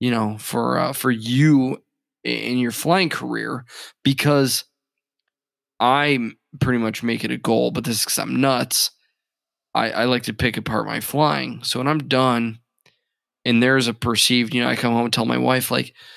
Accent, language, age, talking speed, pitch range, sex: American, English, 20-39, 180 wpm, 115-135 Hz, male